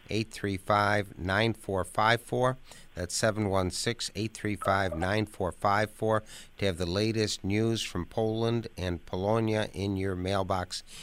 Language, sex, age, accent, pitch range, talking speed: English, male, 60-79, American, 90-105 Hz, 80 wpm